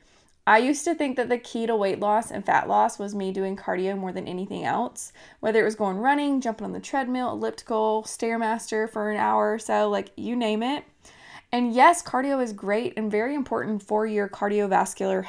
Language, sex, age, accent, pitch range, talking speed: English, female, 20-39, American, 195-235 Hz, 205 wpm